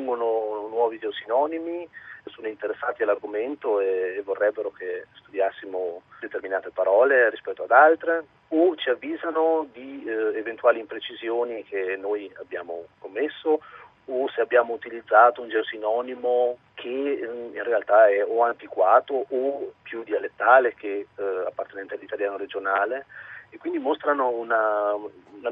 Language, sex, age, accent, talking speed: Italian, male, 40-59, native, 125 wpm